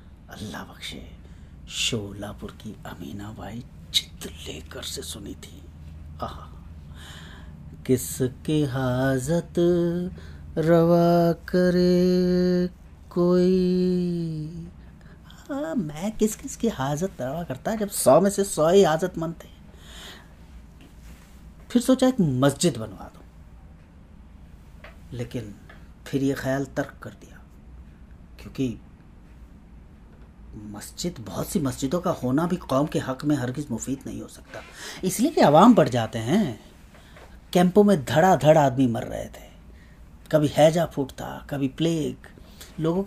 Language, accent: Hindi, native